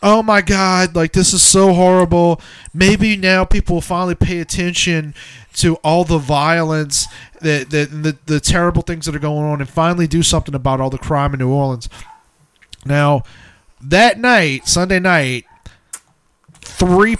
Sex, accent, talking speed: male, American, 155 wpm